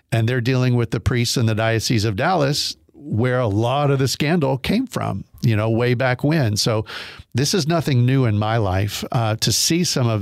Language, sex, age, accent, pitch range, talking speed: English, male, 50-69, American, 110-135 Hz, 215 wpm